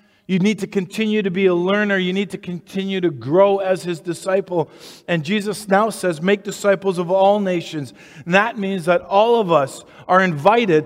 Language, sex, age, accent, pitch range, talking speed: English, male, 50-69, American, 135-185 Hz, 195 wpm